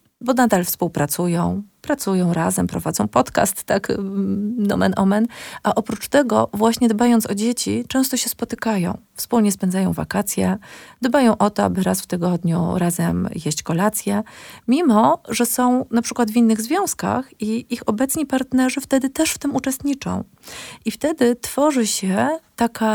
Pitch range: 190-235 Hz